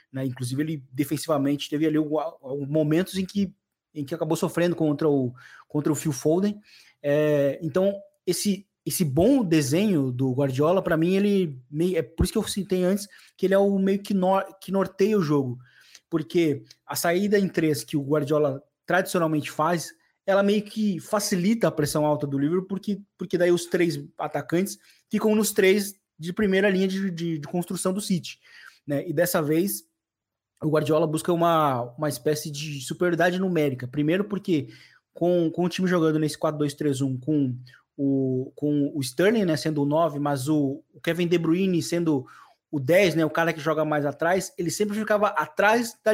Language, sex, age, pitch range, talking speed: Portuguese, male, 20-39, 150-190 Hz, 180 wpm